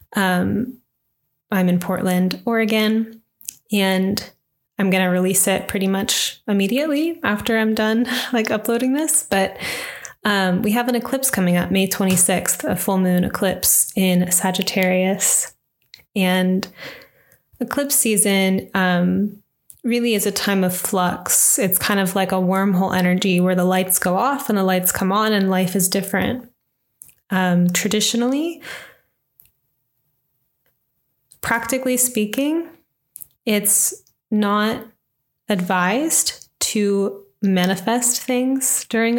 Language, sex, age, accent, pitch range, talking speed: English, female, 20-39, American, 185-230 Hz, 120 wpm